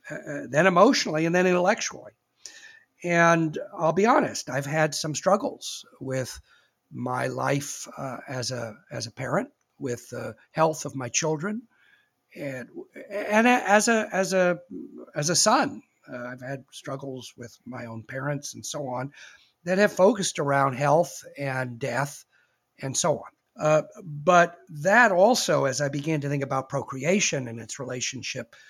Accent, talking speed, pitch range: American, 155 wpm, 135-185 Hz